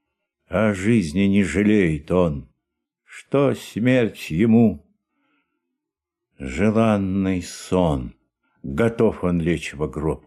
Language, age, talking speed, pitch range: Russian, 60-79, 90 wpm, 90-120 Hz